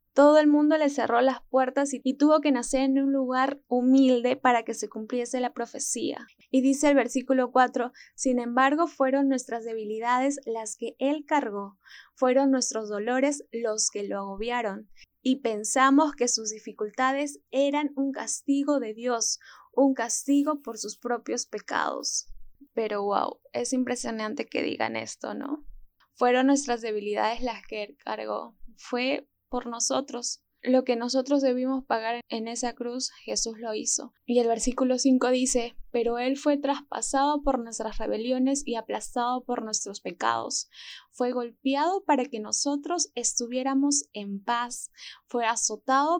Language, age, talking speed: Spanish, 10-29, 150 wpm